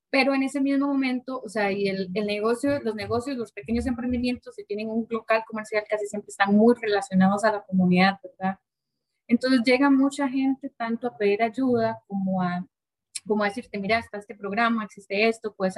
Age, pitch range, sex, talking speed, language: 20-39, 205-250 Hz, female, 195 wpm, Spanish